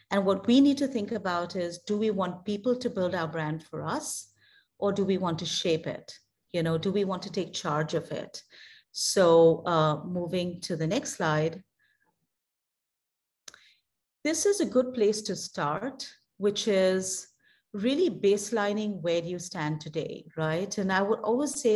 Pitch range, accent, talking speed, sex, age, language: 170-220 Hz, Indian, 175 wpm, female, 30-49, English